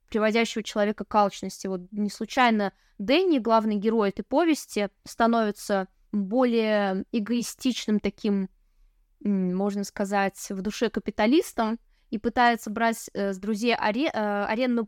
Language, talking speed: Russian, 115 wpm